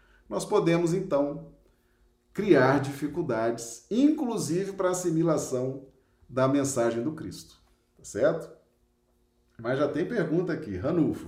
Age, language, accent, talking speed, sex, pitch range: 40-59, Portuguese, Brazilian, 110 wpm, male, 130-185 Hz